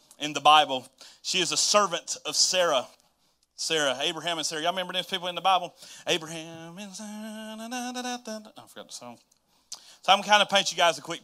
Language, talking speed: English, 240 wpm